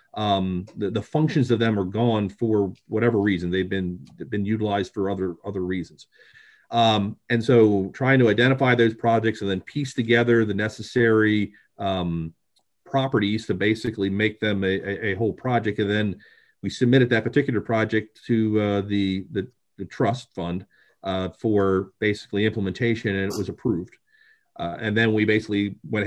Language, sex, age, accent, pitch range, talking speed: English, male, 40-59, American, 95-115 Hz, 170 wpm